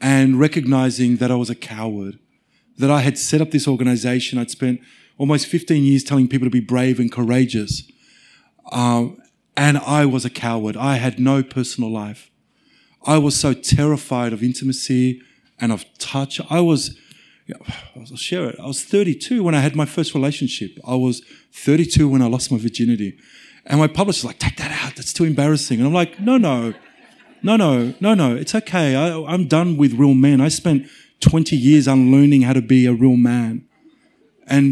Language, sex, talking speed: English, male, 185 wpm